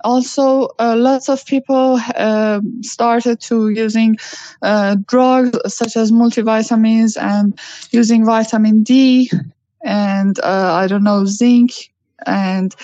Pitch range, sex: 205-240 Hz, female